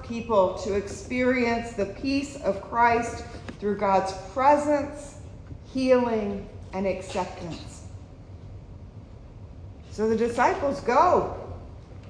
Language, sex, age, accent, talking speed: English, female, 40-59, American, 80 wpm